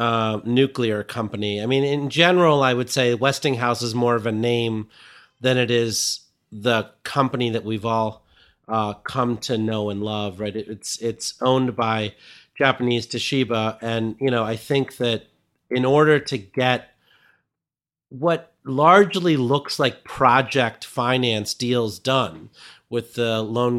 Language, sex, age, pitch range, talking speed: English, male, 40-59, 110-135 Hz, 145 wpm